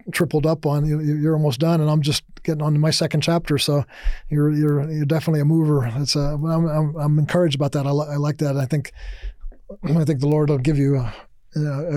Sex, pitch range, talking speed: male, 140-155 Hz, 230 wpm